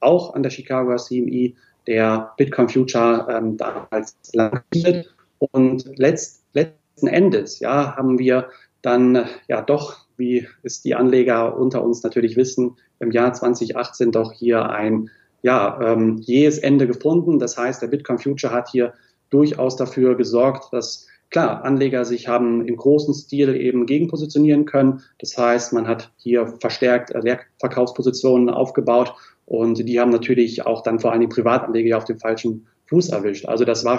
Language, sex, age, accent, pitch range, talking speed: German, male, 30-49, German, 120-135 Hz, 150 wpm